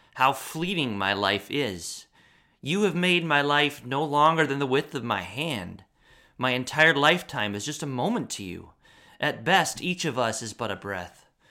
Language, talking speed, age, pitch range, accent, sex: English, 190 wpm, 30-49, 115-160 Hz, American, male